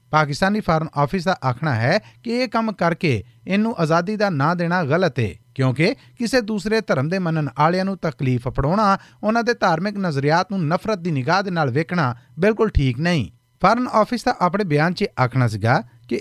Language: Punjabi